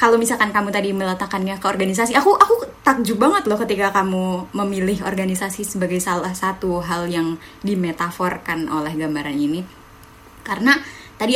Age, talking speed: 20-39, 145 wpm